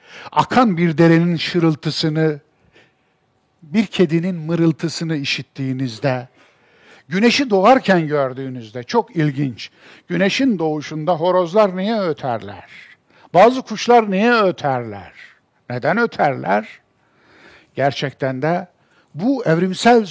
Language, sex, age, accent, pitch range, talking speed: Turkish, male, 60-79, native, 150-205 Hz, 85 wpm